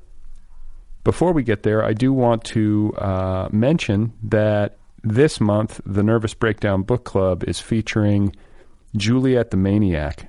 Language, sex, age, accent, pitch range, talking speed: English, male, 40-59, American, 85-105 Hz, 135 wpm